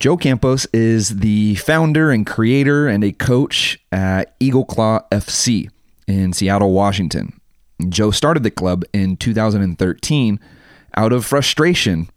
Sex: male